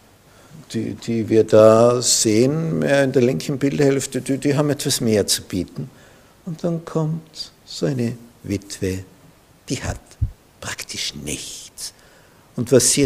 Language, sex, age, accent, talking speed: German, male, 60-79, Austrian, 135 wpm